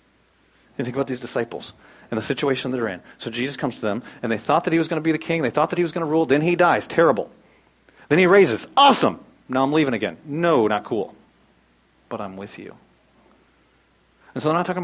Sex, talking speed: male, 240 wpm